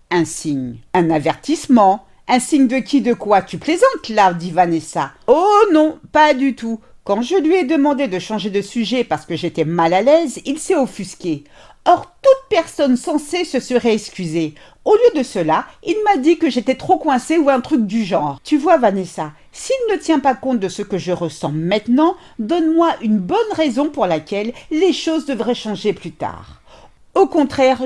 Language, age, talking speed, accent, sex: French, 50-69, 190 wpm, French, female